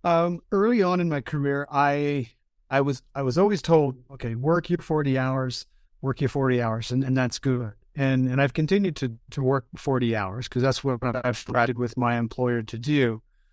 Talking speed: 200 wpm